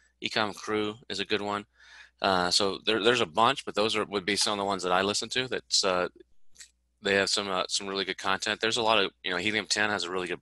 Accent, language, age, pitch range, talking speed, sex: American, English, 30-49, 90-105 Hz, 270 wpm, male